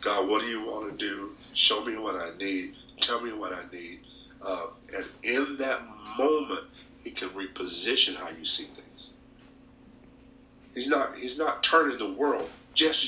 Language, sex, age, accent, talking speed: English, male, 50-69, American, 170 wpm